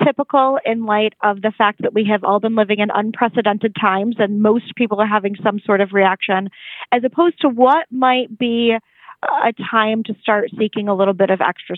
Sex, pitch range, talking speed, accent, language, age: female, 195-225 Hz, 205 wpm, American, English, 20-39